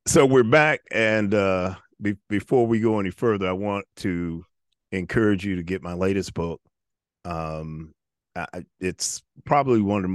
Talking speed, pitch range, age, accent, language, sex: 165 wpm, 80-100 Hz, 40-59, American, English, male